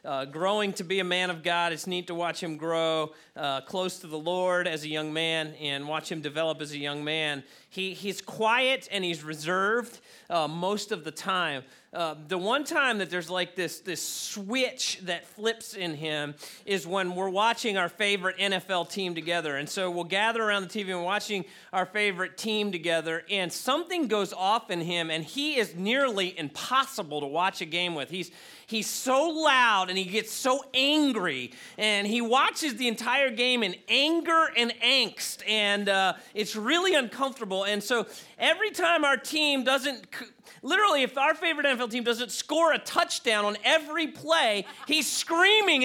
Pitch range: 180-275 Hz